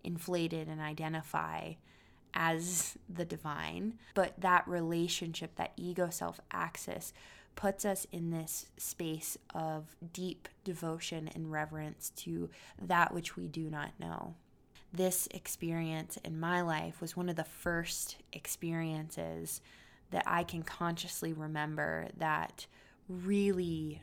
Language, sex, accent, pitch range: English, female, American, 155-175 Hz